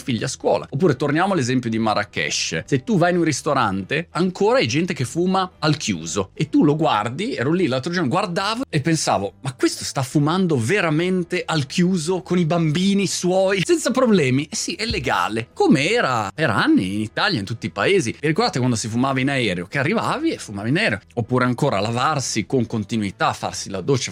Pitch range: 115-180 Hz